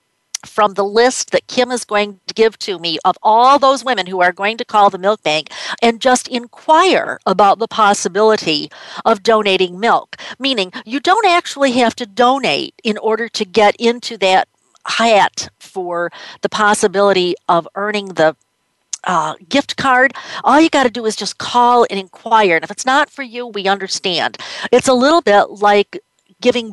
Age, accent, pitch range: 50-69, American, 195-255 Hz